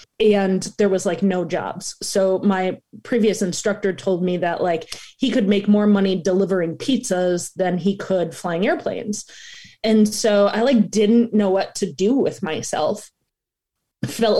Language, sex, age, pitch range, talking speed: English, female, 20-39, 190-225 Hz, 160 wpm